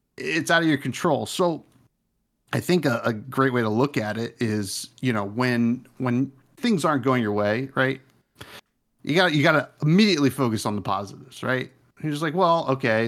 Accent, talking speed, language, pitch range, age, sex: American, 190 wpm, English, 120-150 Hz, 40-59, male